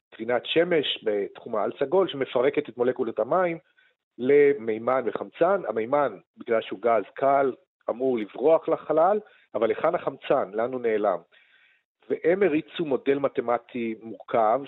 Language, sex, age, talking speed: Hebrew, male, 40-59, 125 wpm